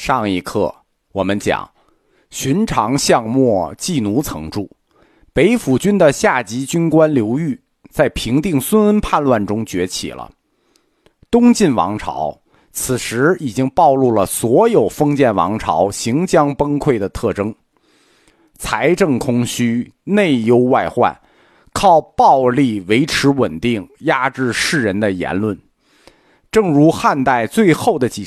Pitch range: 105-155 Hz